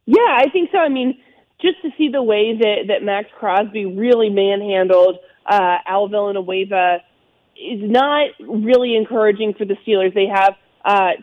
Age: 30-49